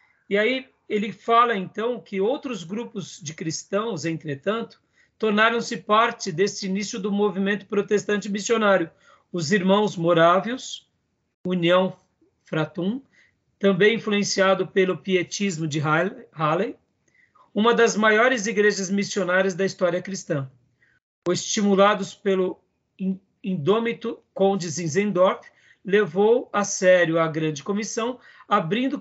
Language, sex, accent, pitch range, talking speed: Portuguese, male, Brazilian, 185-230 Hz, 105 wpm